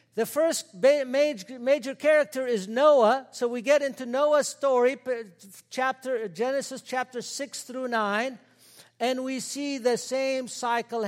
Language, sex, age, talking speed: English, male, 60-79, 125 wpm